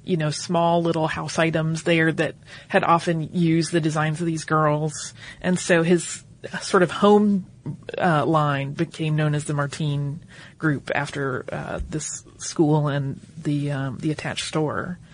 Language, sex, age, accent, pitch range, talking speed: English, female, 30-49, American, 145-180 Hz, 160 wpm